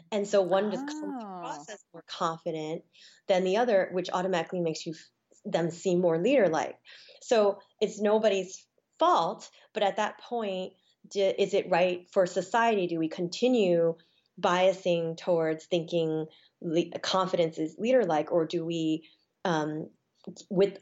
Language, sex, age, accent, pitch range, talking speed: English, female, 20-39, American, 170-200 Hz, 145 wpm